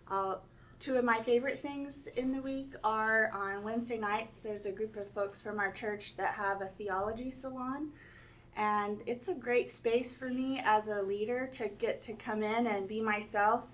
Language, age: English, 30-49